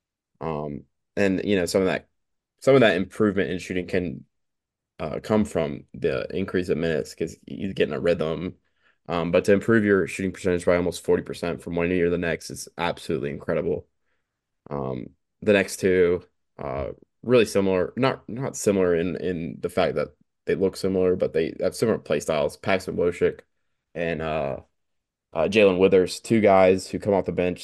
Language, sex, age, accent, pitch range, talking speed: English, male, 20-39, American, 85-100 Hz, 180 wpm